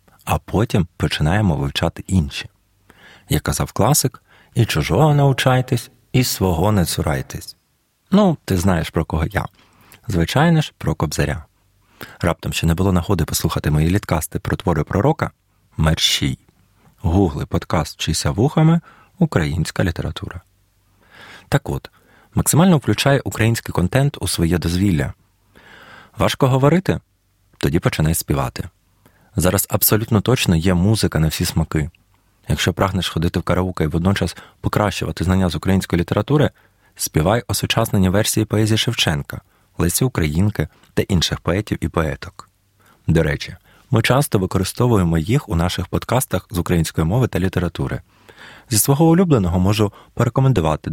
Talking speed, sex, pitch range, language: 130 wpm, male, 85-110 Hz, Ukrainian